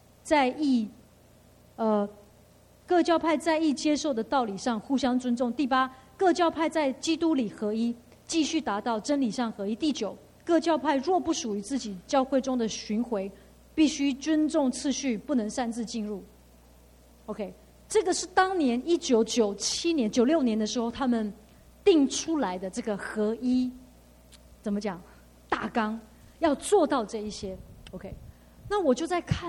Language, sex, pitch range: English, female, 230-325 Hz